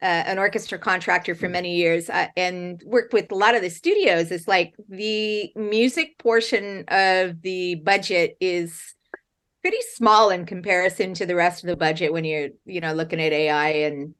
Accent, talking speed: American, 180 wpm